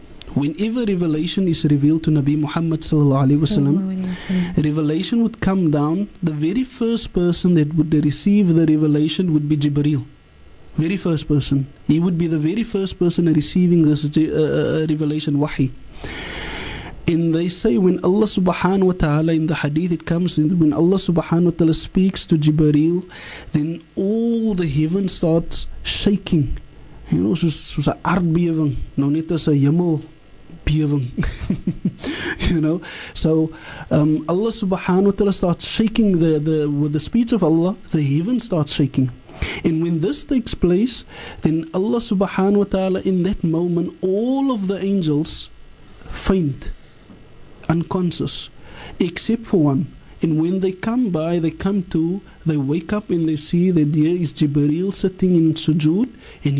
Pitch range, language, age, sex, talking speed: 155-190 Hz, English, 20-39, male, 150 wpm